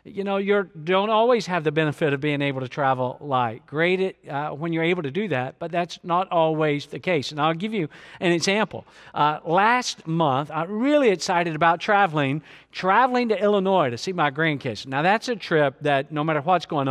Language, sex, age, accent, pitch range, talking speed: English, male, 50-69, American, 145-180 Hz, 210 wpm